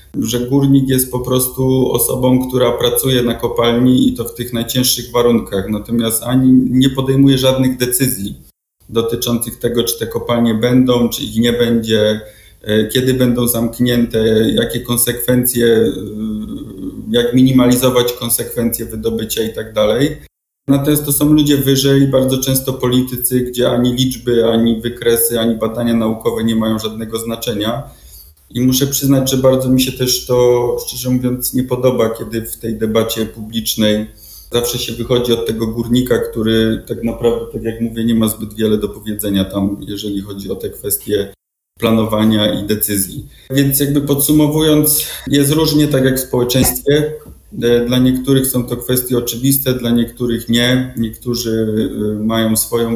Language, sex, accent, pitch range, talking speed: Polish, male, native, 110-130 Hz, 145 wpm